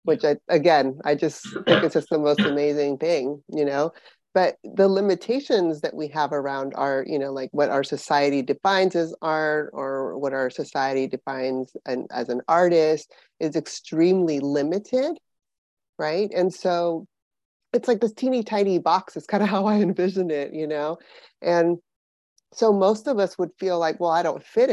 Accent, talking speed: American, 175 wpm